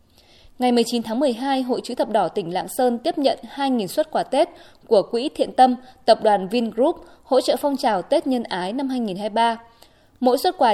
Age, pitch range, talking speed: 20-39, 205-275 Hz, 200 wpm